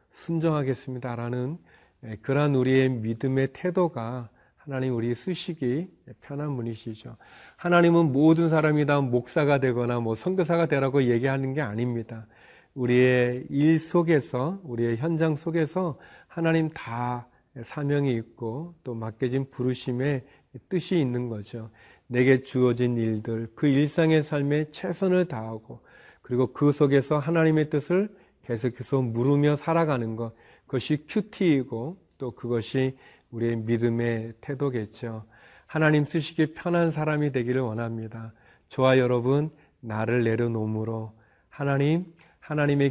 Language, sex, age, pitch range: Korean, male, 40-59, 120-150 Hz